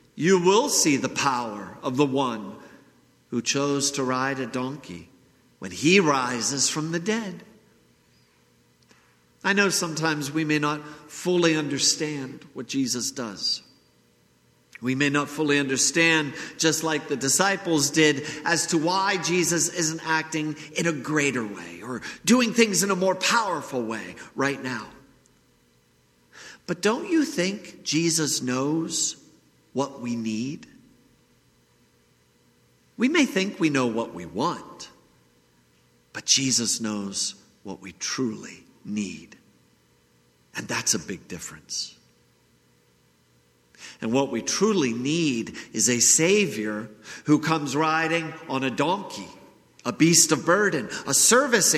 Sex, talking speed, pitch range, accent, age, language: male, 125 wpm, 105-170 Hz, American, 50-69, English